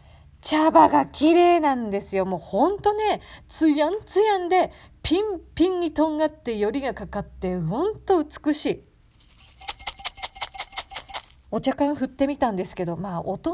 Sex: female